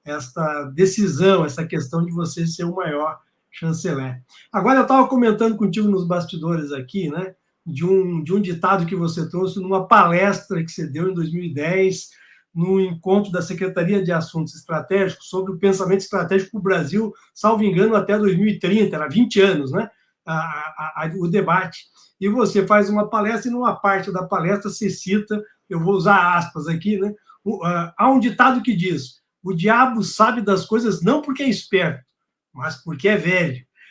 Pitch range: 170-210 Hz